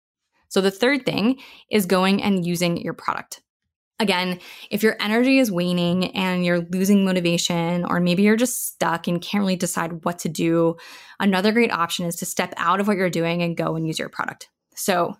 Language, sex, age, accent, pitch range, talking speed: English, female, 10-29, American, 175-220 Hz, 195 wpm